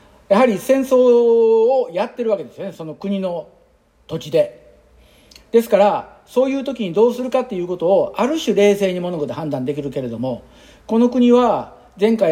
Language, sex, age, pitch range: Japanese, male, 50-69, 140-210 Hz